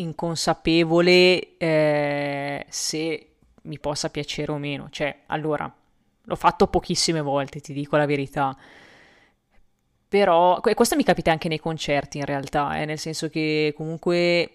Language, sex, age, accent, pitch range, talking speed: Italian, female, 20-39, native, 155-180 Hz, 135 wpm